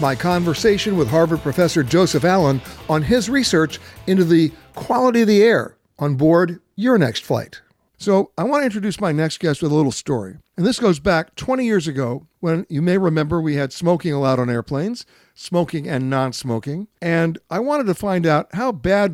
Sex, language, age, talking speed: male, English, 60-79, 190 wpm